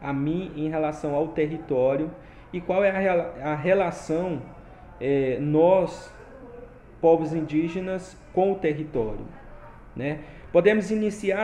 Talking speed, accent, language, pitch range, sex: 110 wpm, Brazilian, Portuguese, 150-185 Hz, male